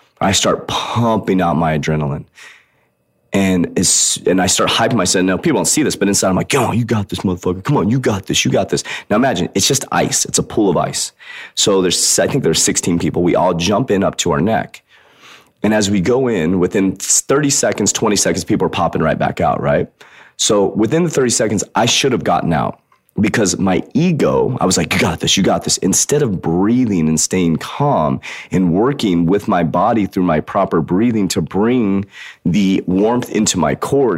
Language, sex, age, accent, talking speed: English, male, 30-49, American, 215 wpm